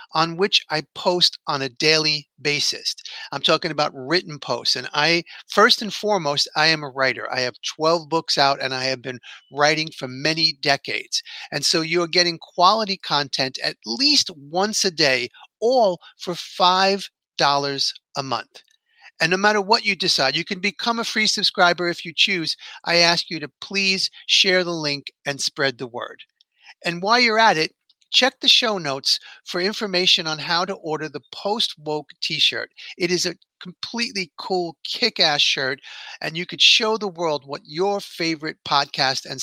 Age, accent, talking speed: 40-59, American, 175 wpm